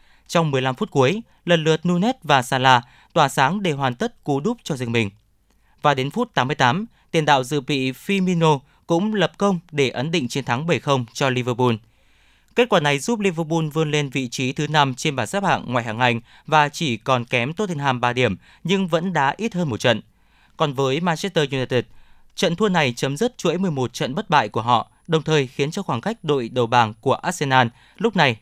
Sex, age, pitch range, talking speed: male, 20-39, 130-180 Hz, 210 wpm